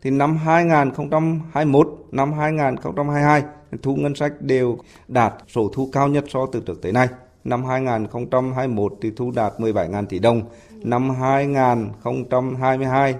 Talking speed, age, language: 135 wpm, 20-39, Vietnamese